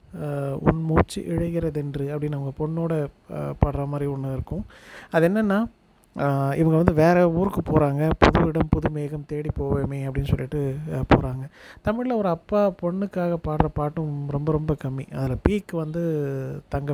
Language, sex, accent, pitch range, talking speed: Tamil, male, native, 135-165 Hz, 140 wpm